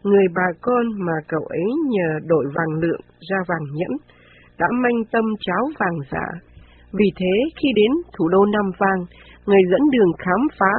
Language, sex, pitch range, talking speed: Vietnamese, female, 170-215 Hz, 180 wpm